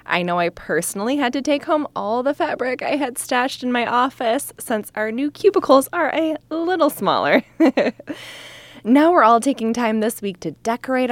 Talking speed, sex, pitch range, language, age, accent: 185 wpm, female, 185-280 Hz, English, 20-39, American